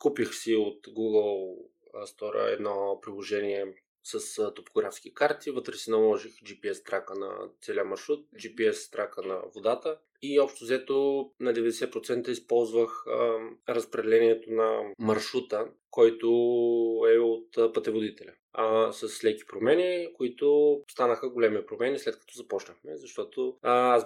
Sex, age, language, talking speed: male, 20-39, Bulgarian, 125 wpm